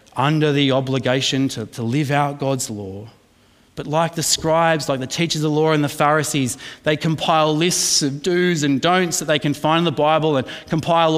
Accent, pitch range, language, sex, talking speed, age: Australian, 115-155 Hz, English, male, 200 wpm, 30-49